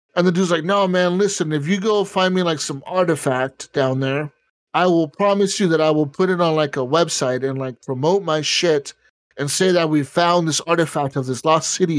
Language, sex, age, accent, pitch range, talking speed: English, male, 30-49, American, 155-215 Hz, 230 wpm